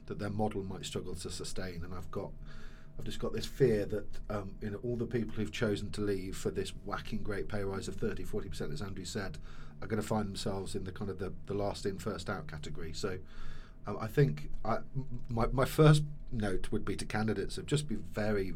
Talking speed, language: 225 wpm, English